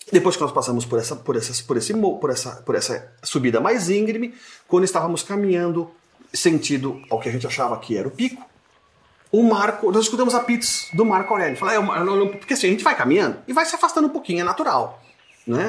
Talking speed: 225 wpm